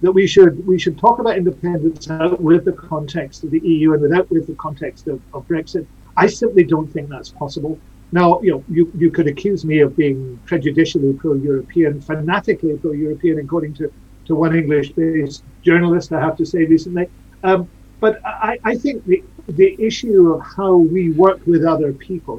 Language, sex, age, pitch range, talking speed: English, male, 50-69, 155-185 Hz, 180 wpm